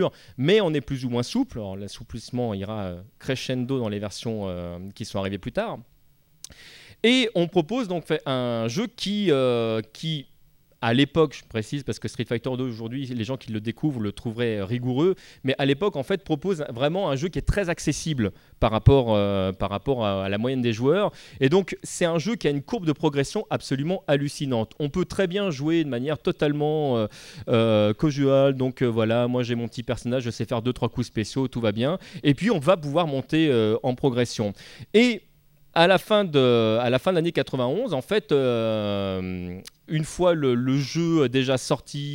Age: 30-49